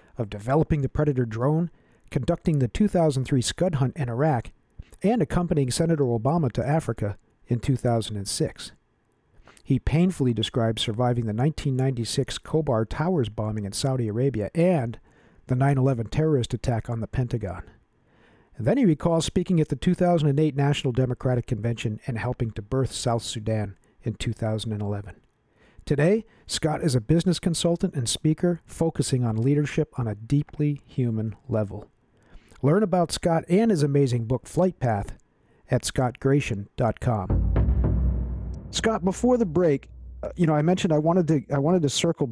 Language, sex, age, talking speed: English, male, 50-69, 145 wpm